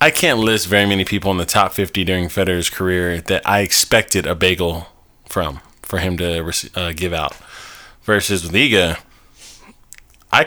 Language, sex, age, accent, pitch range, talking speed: English, male, 20-39, American, 90-110 Hz, 160 wpm